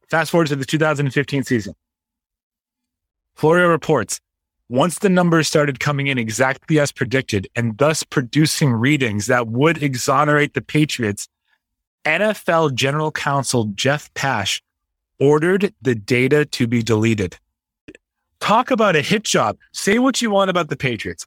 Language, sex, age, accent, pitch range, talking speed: English, male, 30-49, American, 120-155 Hz, 140 wpm